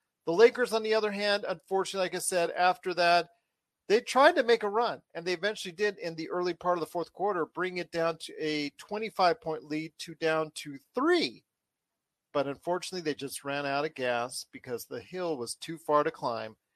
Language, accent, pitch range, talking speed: English, American, 155-210 Hz, 205 wpm